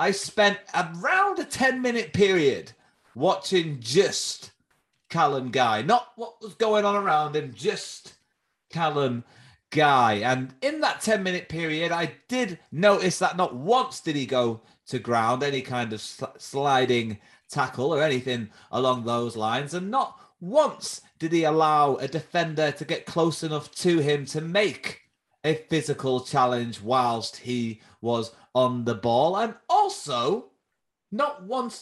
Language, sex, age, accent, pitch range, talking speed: English, male, 30-49, British, 125-185 Hz, 140 wpm